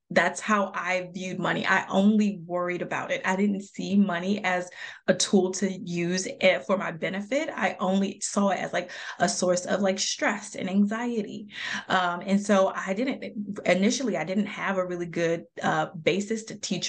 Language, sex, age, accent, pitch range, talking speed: English, female, 20-39, American, 185-210 Hz, 185 wpm